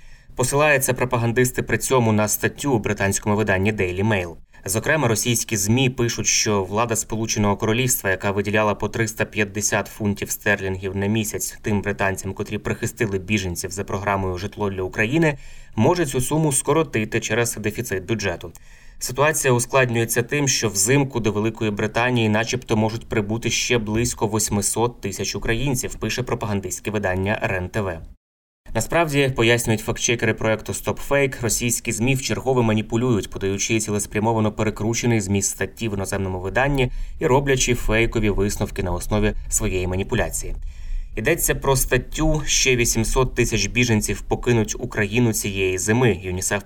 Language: Ukrainian